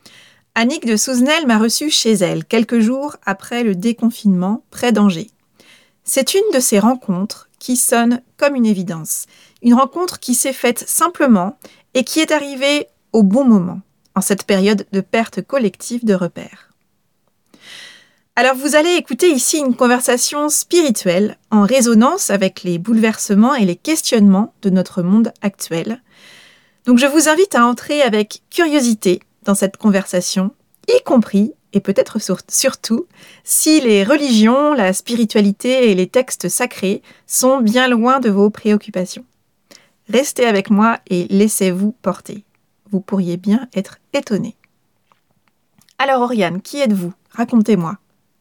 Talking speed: 140 wpm